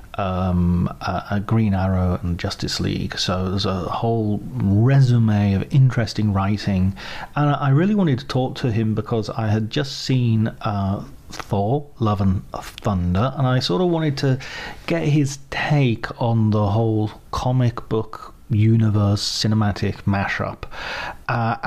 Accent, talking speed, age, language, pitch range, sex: British, 140 wpm, 40-59, English, 105-135 Hz, male